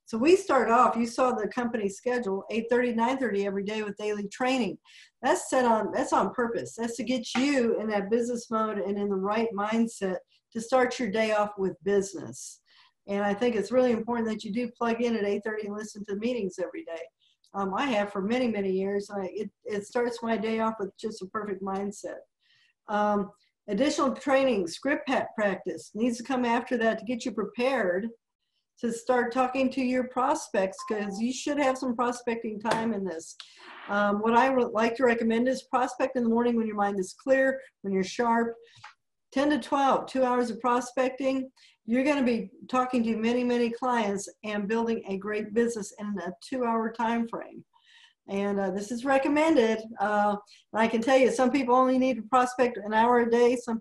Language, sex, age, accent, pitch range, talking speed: English, female, 50-69, American, 205-250 Hz, 195 wpm